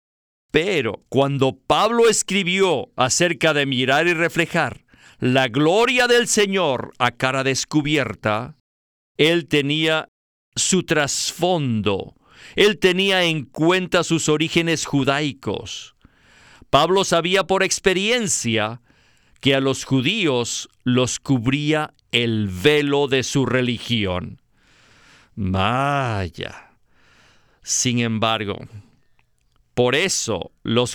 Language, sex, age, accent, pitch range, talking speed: Spanish, male, 50-69, Mexican, 120-175 Hz, 95 wpm